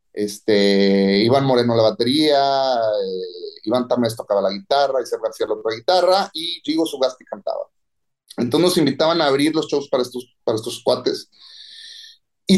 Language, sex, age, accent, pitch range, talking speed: English, male, 30-49, Mexican, 115-170 Hz, 160 wpm